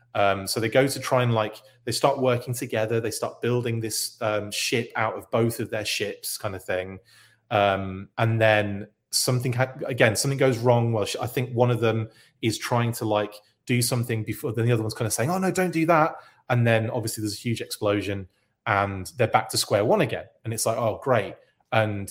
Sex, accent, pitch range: male, British, 105-130 Hz